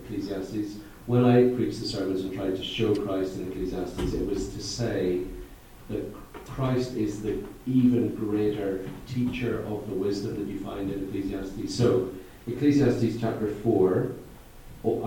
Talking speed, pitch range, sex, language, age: 145 wpm, 95-115 Hz, male, English, 40-59